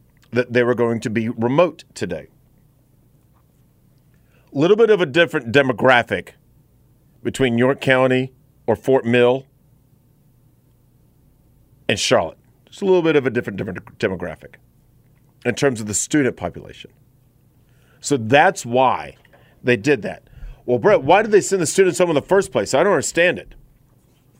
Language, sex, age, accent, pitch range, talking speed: English, male, 40-59, American, 125-140 Hz, 150 wpm